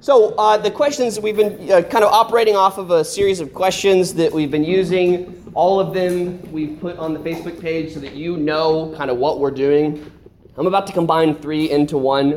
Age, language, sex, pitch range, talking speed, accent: 20-39, English, male, 130-175 Hz, 220 wpm, American